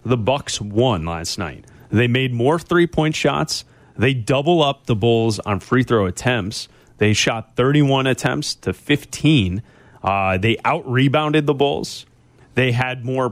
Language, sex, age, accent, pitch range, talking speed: English, male, 30-49, American, 110-145 Hz, 145 wpm